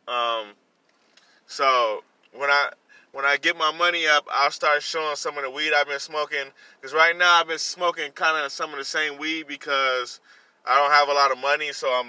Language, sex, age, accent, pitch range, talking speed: English, male, 20-39, American, 135-155 Hz, 215 wpm